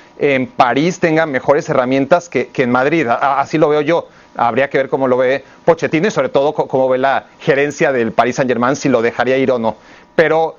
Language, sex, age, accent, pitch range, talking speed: Spanish, male, 40-59, Mexican, 140-180 Hz, 215 wpm